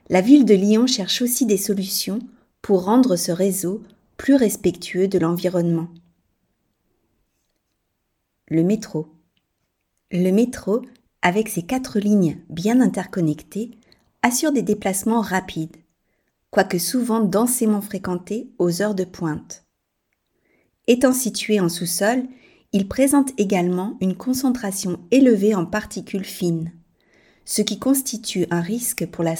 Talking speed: 120 wpm